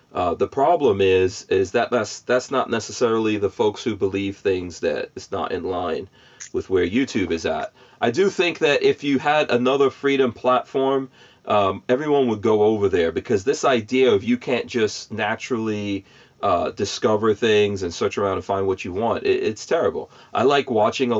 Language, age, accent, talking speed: English, 40-59, American, 190 wpm